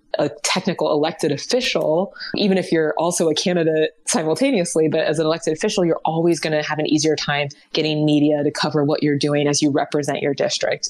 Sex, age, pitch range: female, 20-39, 150-185 Hz